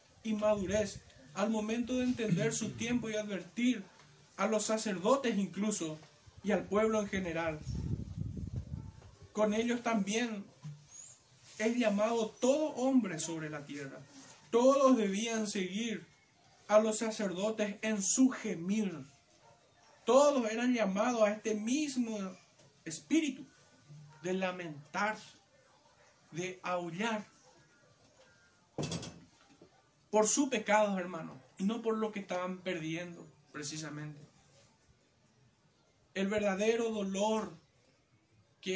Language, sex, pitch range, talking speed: Spanish, male, 165-220 Hz, 100 wpm